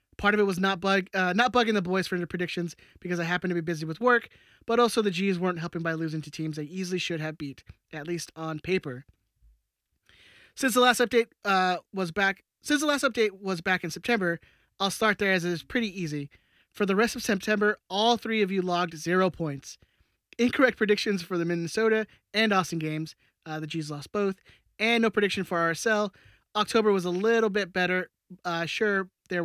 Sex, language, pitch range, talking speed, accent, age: male, English, 170-205 Hz, 210 wpm, American, 20-39